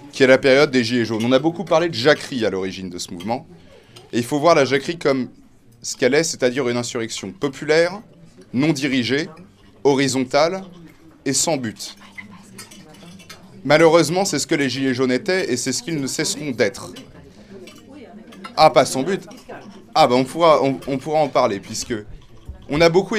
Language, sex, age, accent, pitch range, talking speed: French, male, 20-39, French, 115-145 Hz, 185 wpm